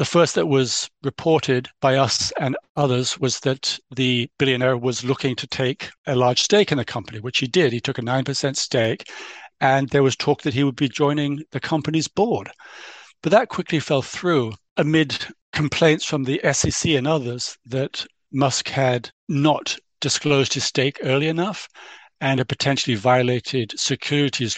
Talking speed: 170 wpm